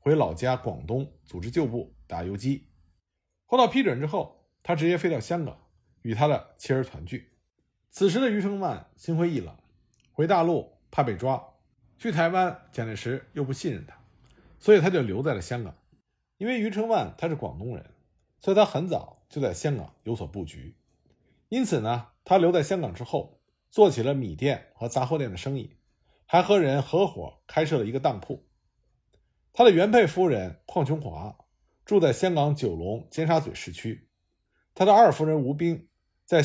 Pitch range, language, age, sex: 115-175 Hz, Chinese, 50-69, male